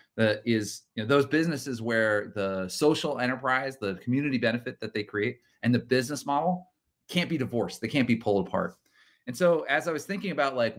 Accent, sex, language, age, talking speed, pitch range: American, male, English, 30-49, 200 wpm, 105-135 Hz